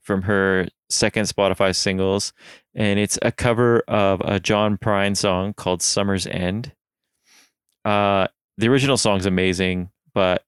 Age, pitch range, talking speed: 20-39, 95-110 Hz, 130 wpm